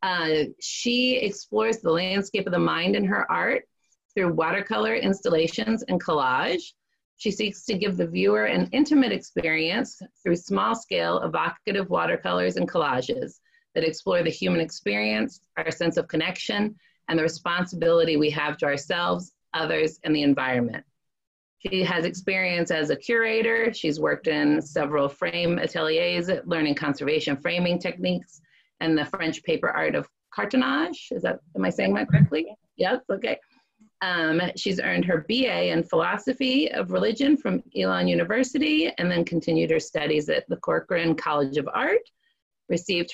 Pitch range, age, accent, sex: 155-225 Hz, 30-49, American, female